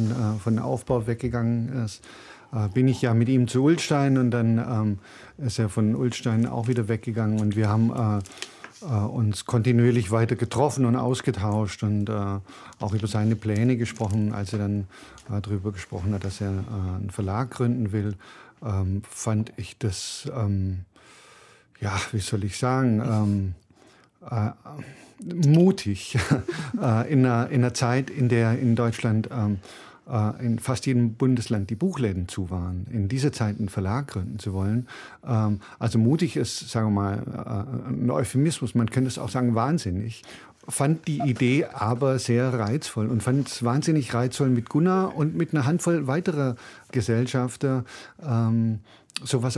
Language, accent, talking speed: German, German, 140 wpm